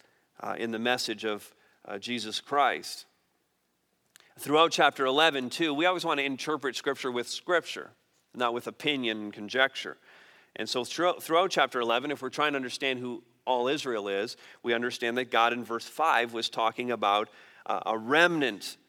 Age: 40-59